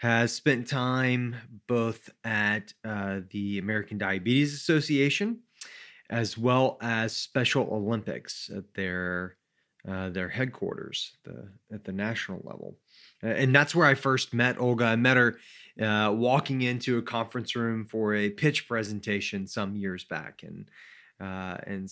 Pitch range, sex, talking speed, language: 100-125 Hz, male, 140 wpm, English